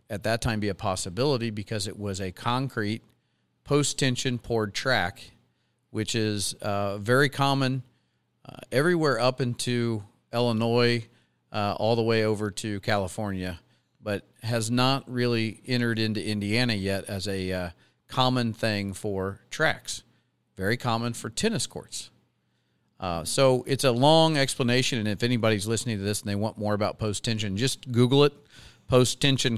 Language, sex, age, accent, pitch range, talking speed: English, male, 40-59, American, 100-120 Hz, 150 wpm